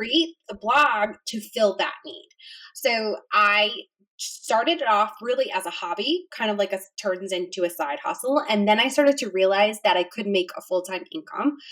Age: 20-39